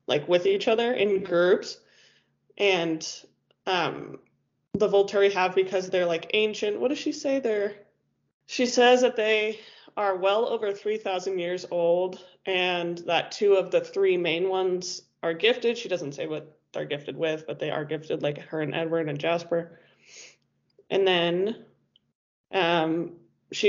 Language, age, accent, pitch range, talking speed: English, 20-39, American, 170-205 Hz, 155 wpm